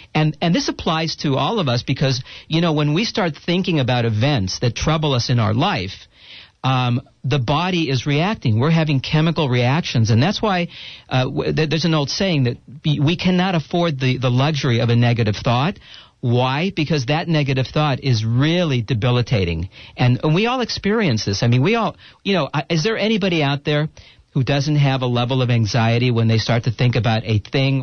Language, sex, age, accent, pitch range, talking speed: English, male, 50-69, American, 120-155 Hz, 200 wpm